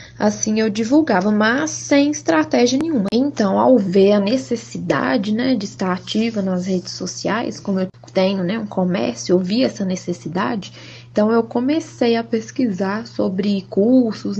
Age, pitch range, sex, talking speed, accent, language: 10-29, 190-230 Hz, female, 150 wpm, Brazilian, Portuguese